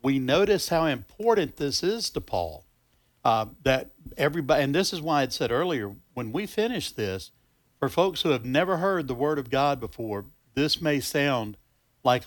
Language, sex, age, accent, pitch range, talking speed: English, male, 60-79, American, 115-155 Hz, 180 wpm